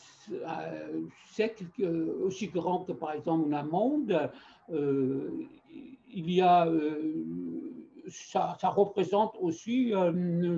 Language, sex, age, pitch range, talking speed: Persian, male, 60-79, 160-210 Hz, 100 wpm